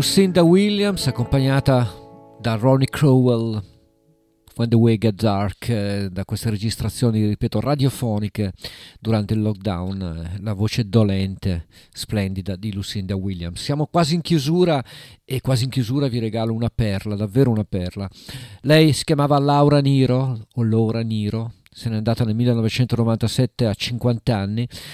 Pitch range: 110-130 Hz